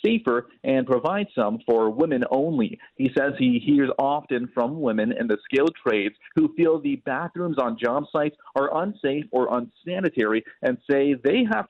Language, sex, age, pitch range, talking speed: English, male, 40-59, 120-165 Hz, 170 wpm